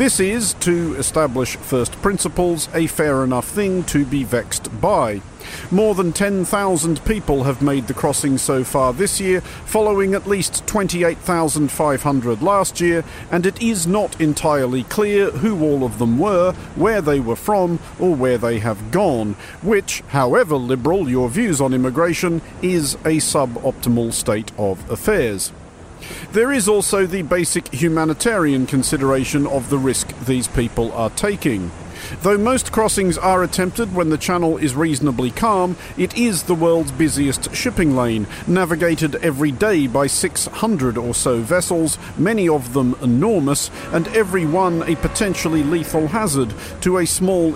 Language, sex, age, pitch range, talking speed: English, male, 50-69, 130-180 Hz, 150 wpm